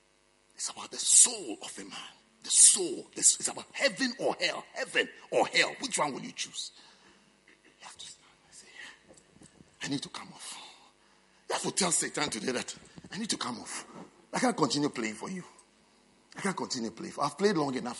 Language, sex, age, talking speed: English, male, 50-69, 195 wpm